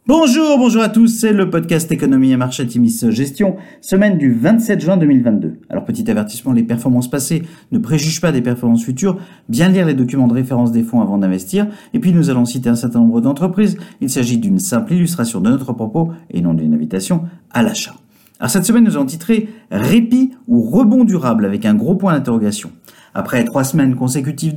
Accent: French